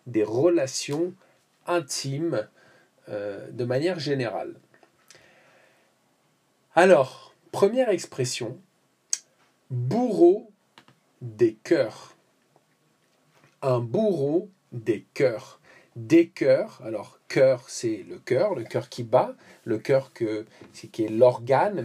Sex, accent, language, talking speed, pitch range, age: male, French, English, 95 wpm, 120-175 Hz, 50-69